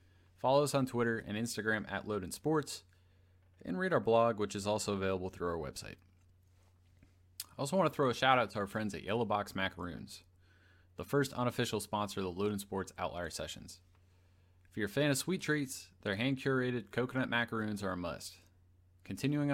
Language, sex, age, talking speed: English, male, 30-49, 185 wpm